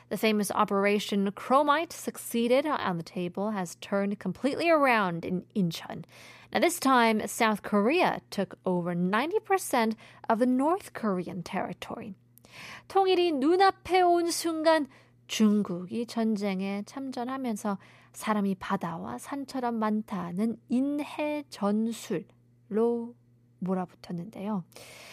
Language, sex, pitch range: Korean, female, 190-255 Hz